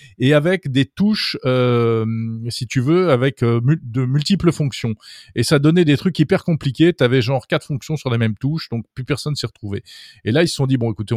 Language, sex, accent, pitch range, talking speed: French, male, French, 115-145 Hz, 225 wpm